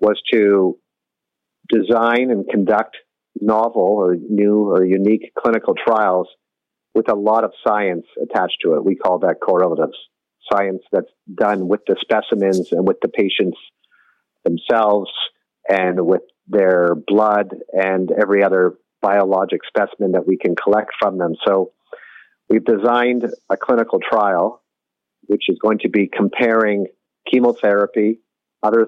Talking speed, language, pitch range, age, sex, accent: 135 wpm, English, 95-115 Hz, 50-69, male, American